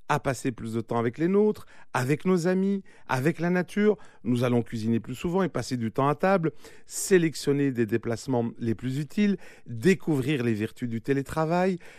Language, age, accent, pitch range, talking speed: French, 40-59, French, 110-155 Hz, 180 wpm